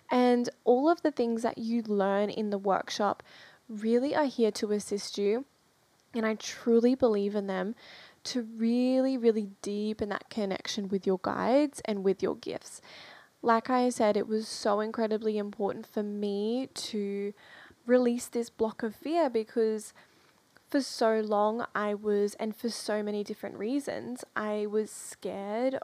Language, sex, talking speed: English, female, 155 wpm